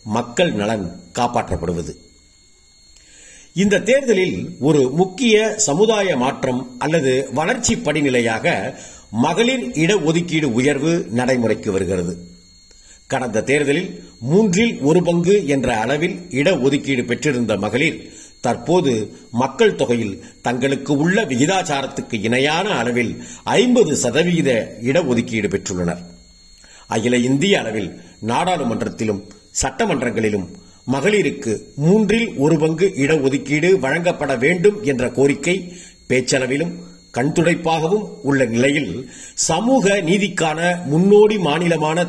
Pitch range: 110-170 Hz